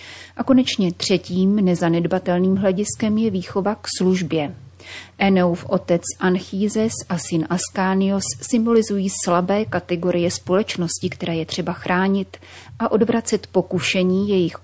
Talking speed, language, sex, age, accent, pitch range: 110 wpm, Czech, female, 30-49, native, 175-205 Hz